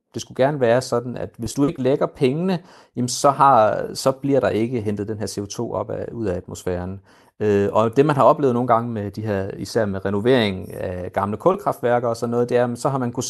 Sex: male